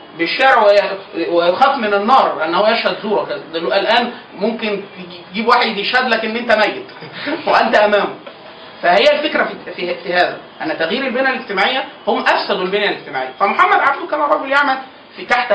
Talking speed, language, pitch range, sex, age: 145 wpm, Arabic, 180-245 Hz, male, 30-49